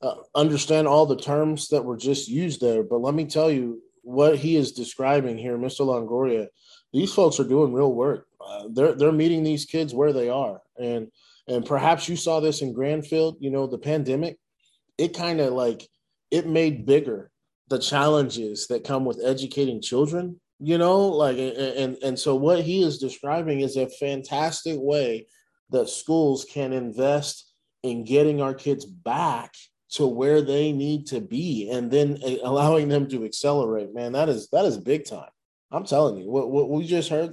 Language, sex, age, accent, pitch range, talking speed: English, male, 20-39, American, 125-155 Hz, 185 wpm